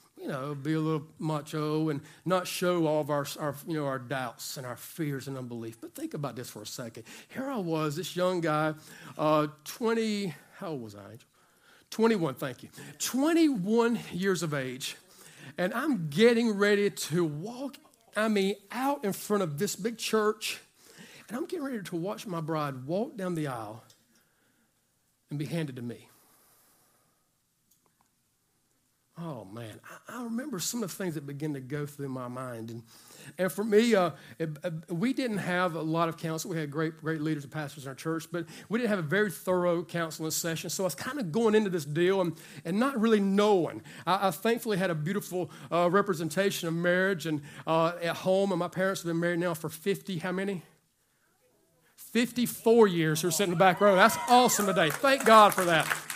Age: 50-69